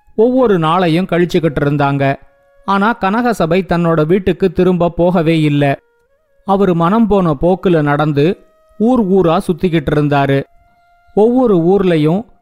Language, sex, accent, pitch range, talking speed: Tamil, male, native, 160-205 Hz, 105 wpm